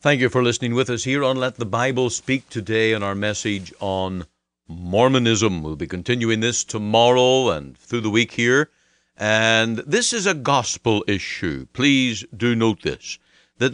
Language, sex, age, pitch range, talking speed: English, male, 50-69, 110-145 Hz, 170 wpm